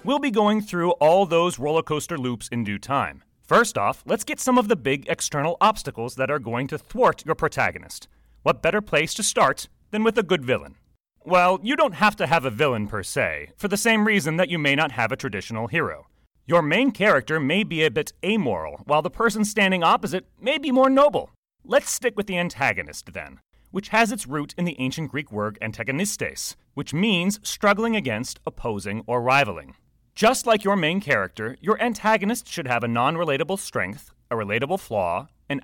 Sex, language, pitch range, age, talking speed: male, English, 125-210 Hz, 30-49, 195 wpm